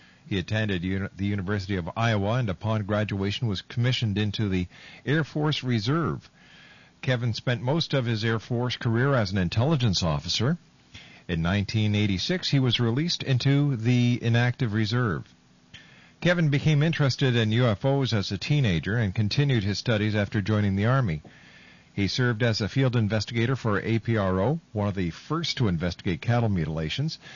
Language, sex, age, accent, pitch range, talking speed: English, male, 50-69, American, 105-135 Hz, 150 wpm